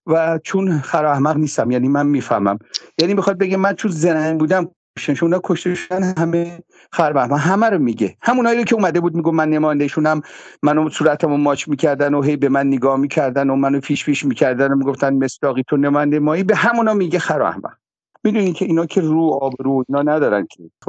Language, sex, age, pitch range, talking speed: English, male, 50-69, 140-185 Hz, 180 wpm